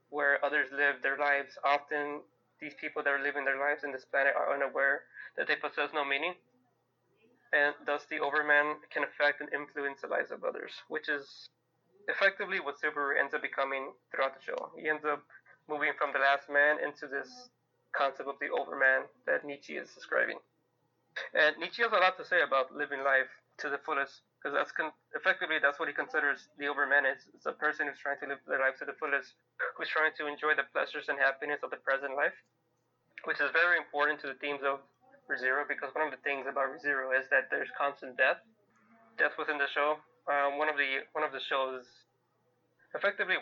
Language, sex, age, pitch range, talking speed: English, male, 20-39, 135-150 Hz, 200 wpm